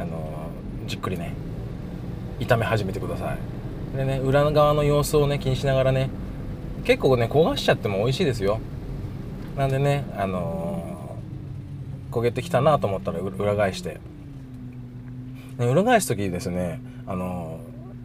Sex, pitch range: male, 105-135 Hz